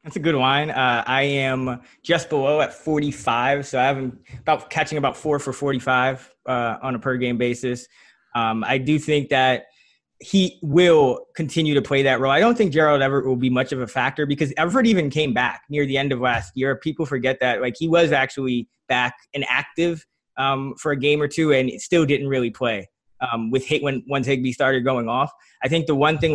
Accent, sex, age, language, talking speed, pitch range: American, male, 20-39, English, 220 wpm, 130-150 Hz